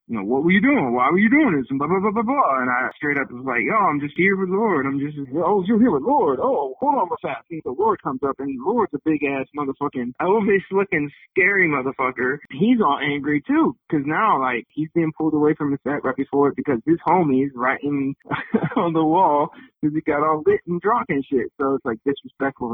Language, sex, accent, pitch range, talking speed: English, male, American, 130-170 Hz, 235 wpm